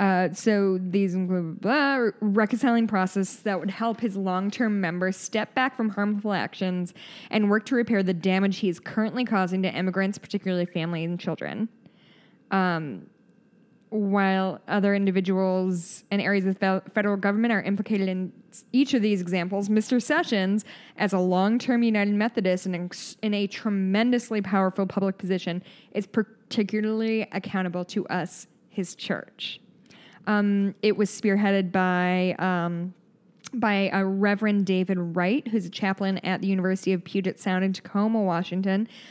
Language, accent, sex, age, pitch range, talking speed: English, American, female, 10-29, 185-215 Hz, 145 wpm